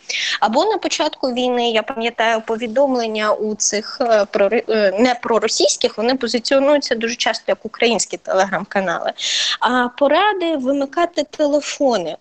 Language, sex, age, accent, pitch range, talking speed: Ukrainian, female, 20-39, native, 225-280 Hz, 100 wpm